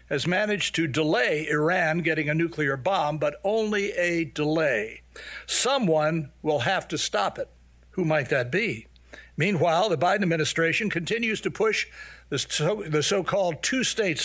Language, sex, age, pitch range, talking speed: English, male, 60-79, 155-190 Hz, 145 wpm